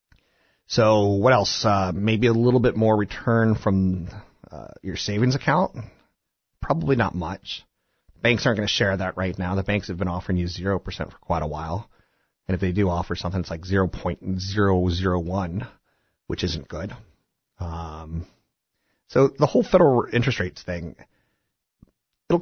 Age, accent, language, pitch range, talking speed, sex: 30-49, American, English, 90-115 Hz, 155 wpm, male